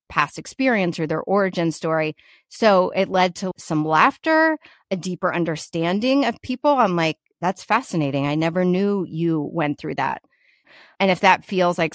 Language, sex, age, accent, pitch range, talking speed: English, female, 30-49, American, 155-190 Hz, 165 wpm